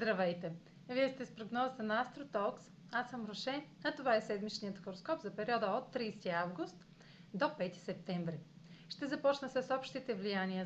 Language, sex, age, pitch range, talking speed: Bulgarian, female, 30-49, 180-250 Hz, 160 wpm